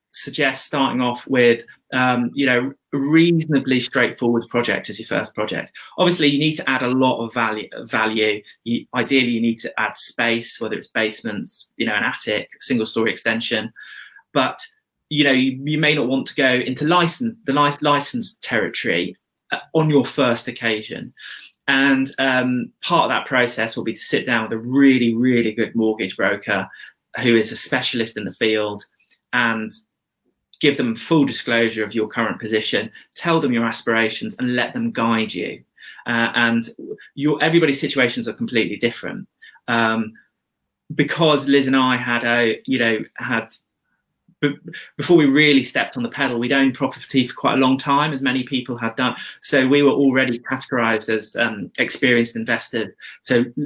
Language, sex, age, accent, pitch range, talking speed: English, male, 20-39, British, 115-140 Hz, 170 wpm